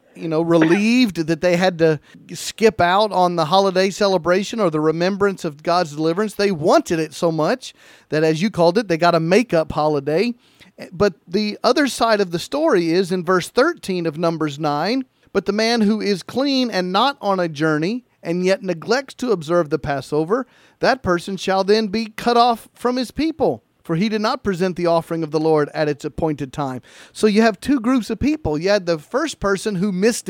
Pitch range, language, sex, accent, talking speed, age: 165-220 Hz, English, male, American, 205 wpm, 40-59